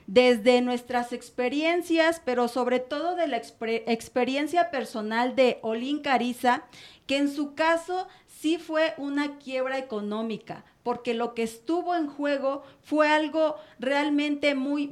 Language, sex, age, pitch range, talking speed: Spanish, female, 40-59, 235-280 Hz, 130 wpm